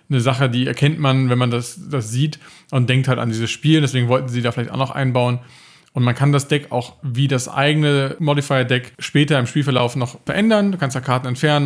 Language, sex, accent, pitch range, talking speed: German, male, German, 125-140 Hz, 225 wpm